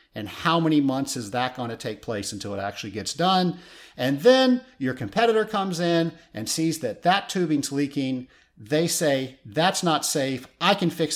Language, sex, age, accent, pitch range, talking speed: English, male, 50-69, American, 115-165 Hz, 190 wpm